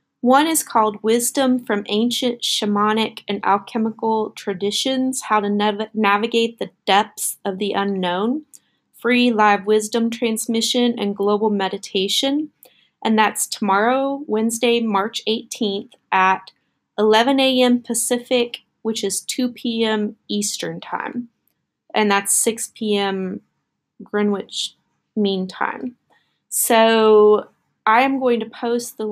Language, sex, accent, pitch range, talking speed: English, female, American, 200-235 Hz, 115 wpm